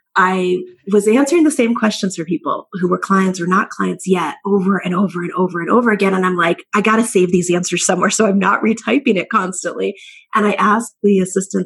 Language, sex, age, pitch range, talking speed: English, female, 30-49, 180-230 Hz, 225 wpm